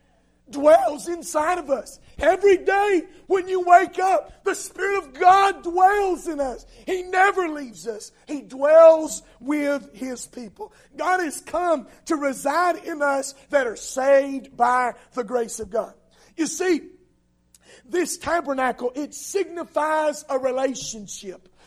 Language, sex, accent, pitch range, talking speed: English, male, American, 245-330 Hz, 135 wpm